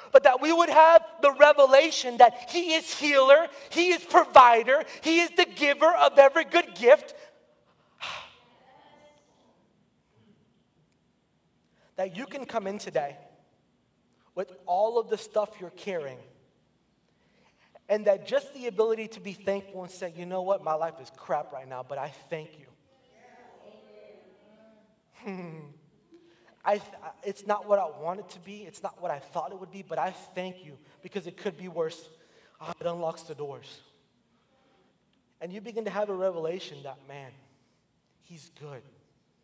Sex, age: male, 30-49